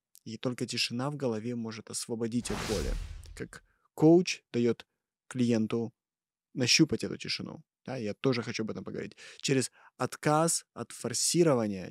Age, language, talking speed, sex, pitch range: 20-39, Russian, 135 wpm, male, 115-140 Hz